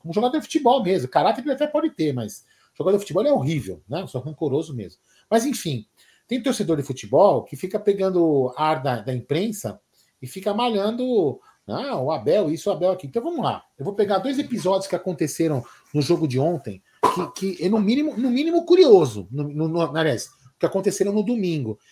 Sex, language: male, Portuguese